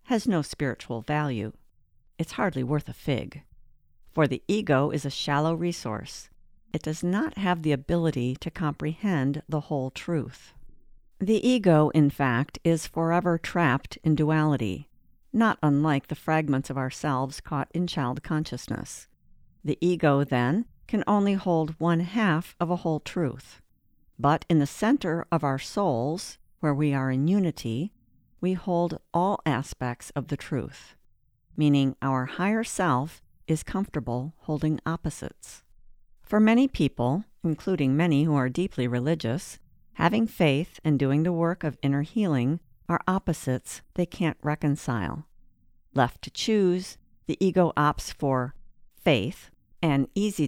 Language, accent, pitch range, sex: English, American, 135-175 Hz, female